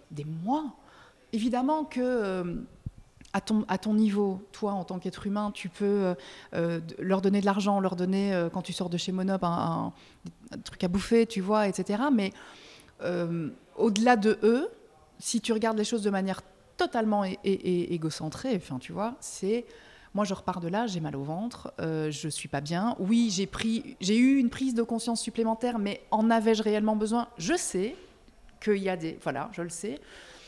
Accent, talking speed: French, 190 wpm